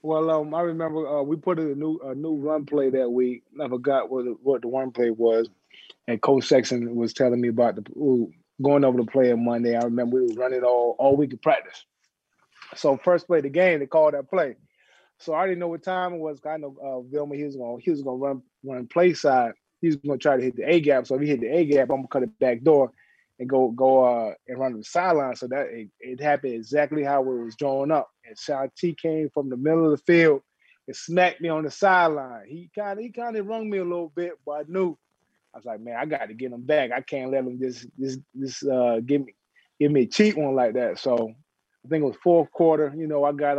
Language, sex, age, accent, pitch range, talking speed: English, male, 20-39, American, 125-160 Hz, 260 wpm